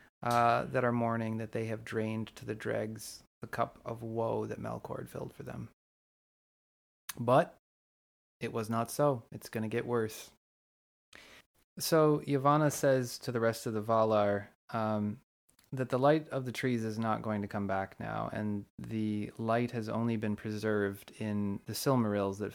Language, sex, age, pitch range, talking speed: English, male, 20-39, 100-125 Hz, 175 wpm